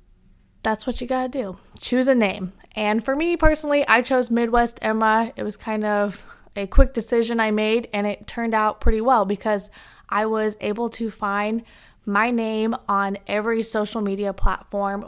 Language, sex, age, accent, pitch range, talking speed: English, female, 20-39, American, 210-240 Hz, 175 wpm